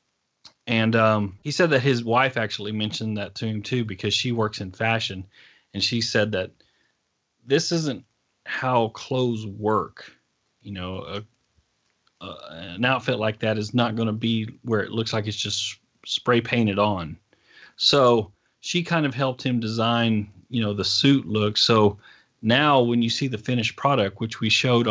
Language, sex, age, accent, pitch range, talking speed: English, male, 30-49, American, 105-125 Hz, 170 wpm